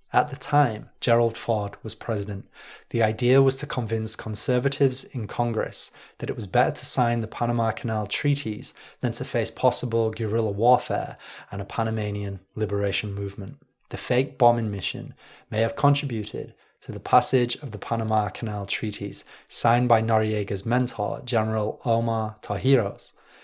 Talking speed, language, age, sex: 150 wpm, English, 20-39, male